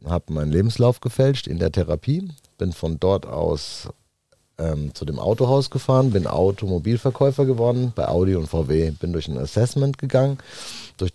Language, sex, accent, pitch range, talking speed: German, male, German, 85-120 Hz, 155 wpm